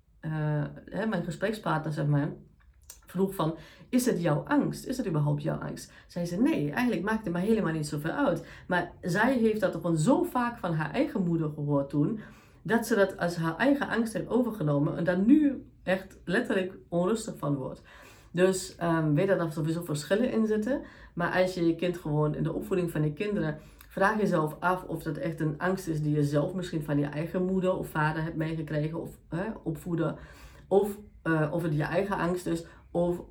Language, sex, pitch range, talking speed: Dutch, female, 155-195 Hz, 195 wpm